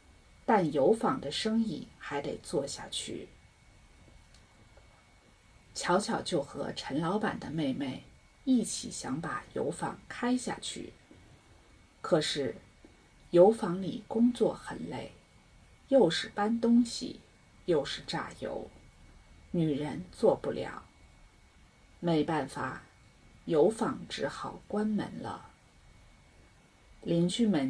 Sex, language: female, English